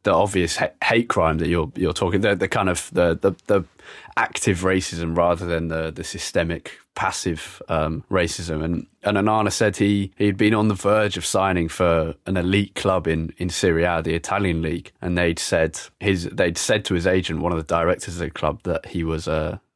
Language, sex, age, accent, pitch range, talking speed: English, male, 20-39, British, 85-105 Hz, 210 wpm